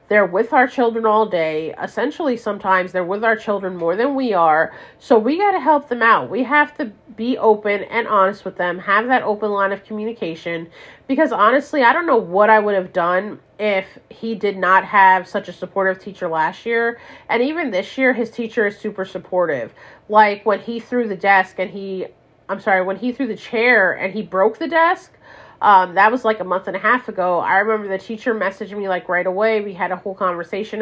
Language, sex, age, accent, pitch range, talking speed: English, female, 30-49, American, 185-225 Hz, 220 wpm